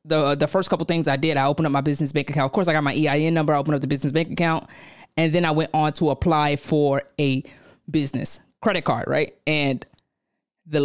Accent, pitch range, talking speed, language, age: American, 140-175 Hz, 240 wpm, English, 20-39